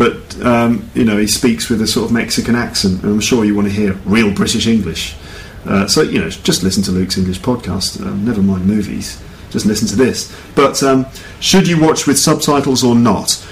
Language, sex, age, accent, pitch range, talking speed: English, male, 40-59, British, 105-135 Hz, 215 wpm